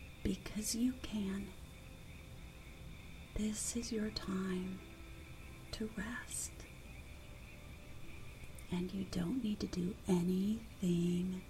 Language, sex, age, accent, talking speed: English, female, 40-59, American, 85 wpm